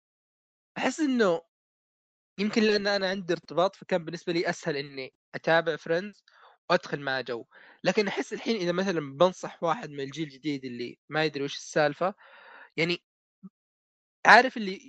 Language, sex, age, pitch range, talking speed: Arabic, male, 20-39, 155-195 Hz, 140 wpm